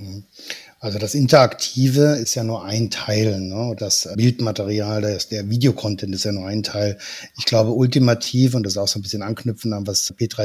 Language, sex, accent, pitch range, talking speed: German, male, German, 110-140 Hz, 190 wpm